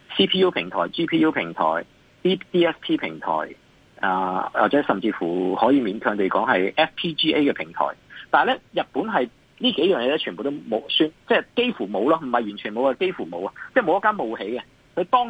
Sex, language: male, Chinese